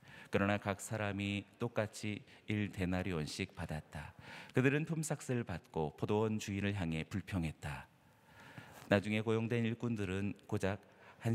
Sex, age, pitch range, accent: male, 40-59, 90-120 Hz, native